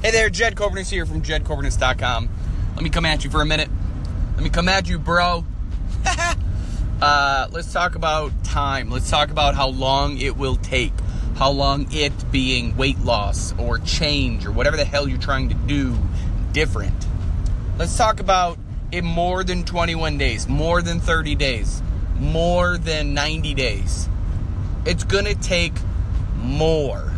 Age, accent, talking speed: 30-49, American, 160 wpm